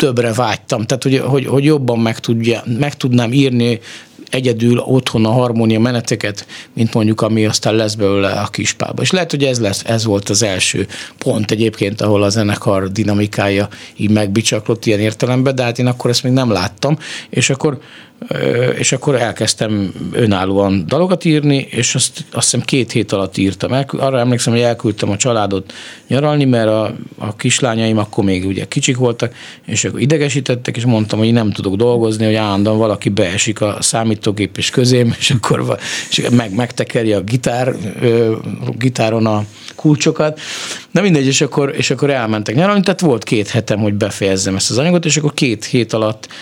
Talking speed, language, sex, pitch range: 170 wpm, Hungarian, male, 105-130 Hz